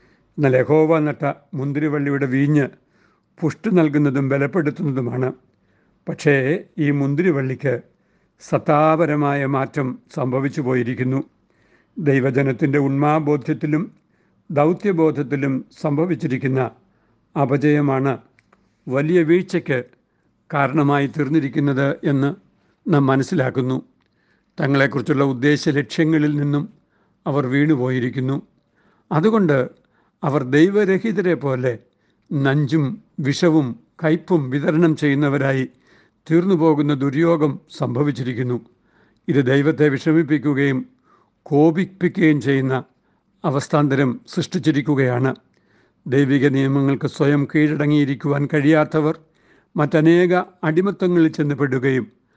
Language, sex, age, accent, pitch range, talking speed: Malayalam, male, 60-79, native, 140-160 Hz, 70 wpm